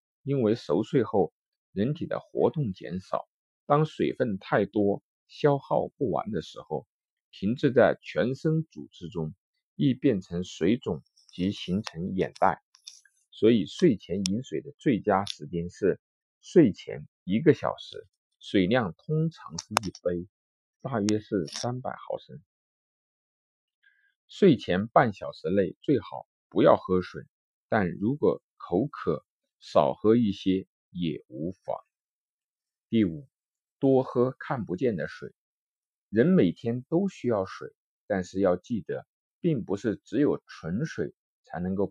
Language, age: Chinese, 50-69